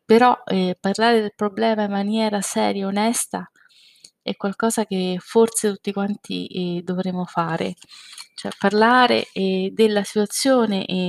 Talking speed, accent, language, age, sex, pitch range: 135 wpm, native, Italian, 20-39, female, 190-225 Hz